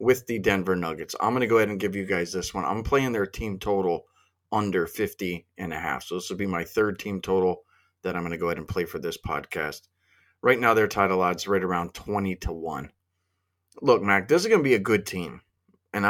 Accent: American